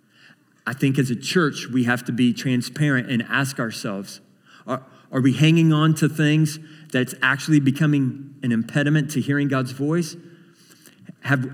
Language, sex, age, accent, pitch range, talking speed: English, male, 40-59, American, 130-160 Hz, 155 wpm